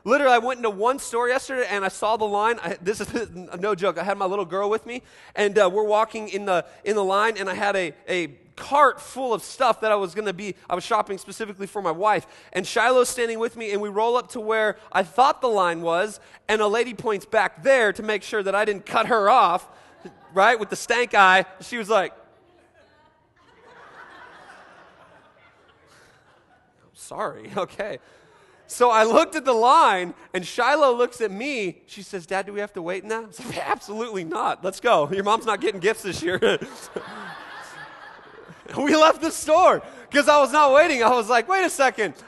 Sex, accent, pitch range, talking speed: male, American, 195-255 Hz, 205 wpm